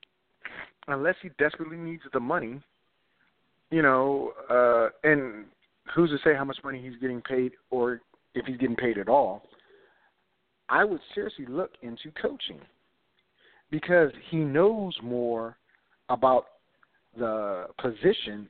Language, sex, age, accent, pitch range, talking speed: English, male, 40-59, American, 125-165 Hz, 125 wpm